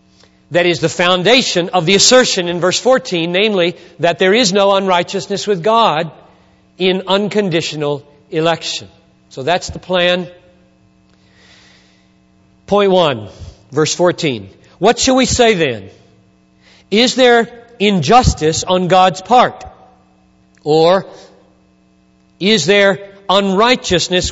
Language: Hindi